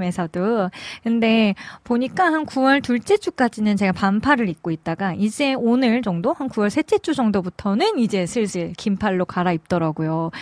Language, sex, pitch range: Korean, female, 185-235 Hz